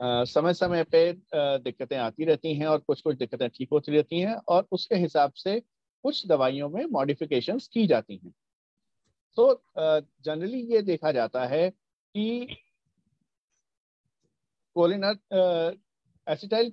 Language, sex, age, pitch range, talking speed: Hindi, male, 50-69, 150-210 Hz, 120 wpm